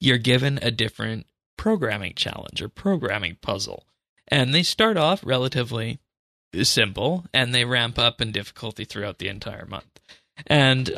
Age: 20-39